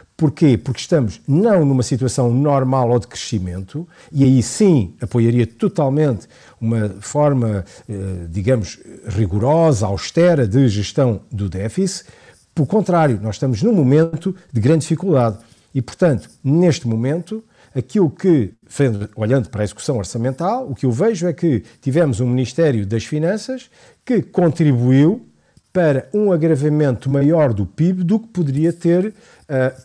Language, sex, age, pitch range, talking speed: Portuguese, male, 50-69, 120-170 Hz, 135 wpm